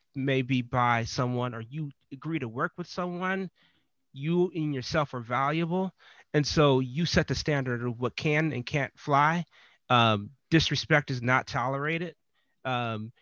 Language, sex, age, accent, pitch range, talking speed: English, male, 30-49, American, 125-155 Hz, 150 wpm